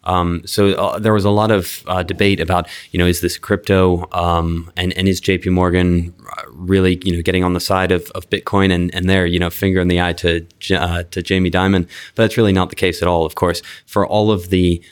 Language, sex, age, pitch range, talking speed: English, male, 20-39, 85-95 Hz, 235 wpm